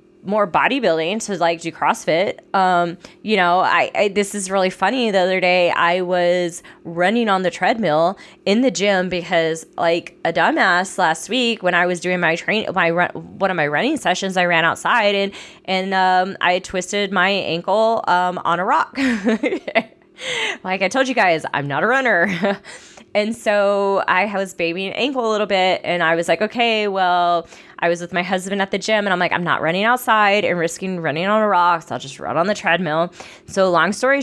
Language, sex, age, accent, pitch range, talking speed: English, female, 20-39, American, 175-215 Hz, 200 wpm